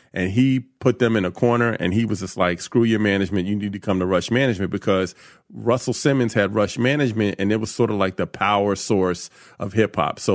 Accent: American